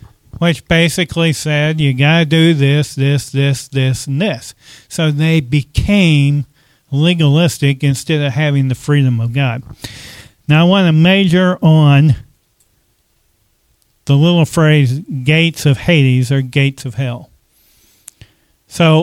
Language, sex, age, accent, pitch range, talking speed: English, male, 40-59, American, 140-165 Hz, 130 wpm